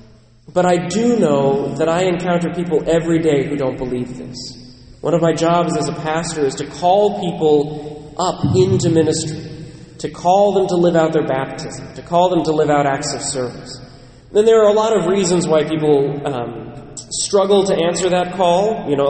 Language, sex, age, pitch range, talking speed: English, male, 30-49, 140-175 Hz, 195 wpm